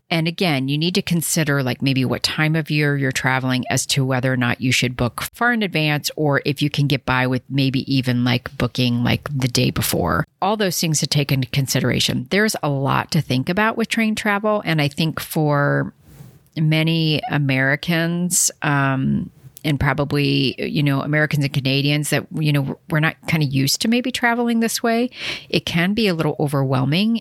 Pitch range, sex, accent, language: 135-170 Hz, female, American, English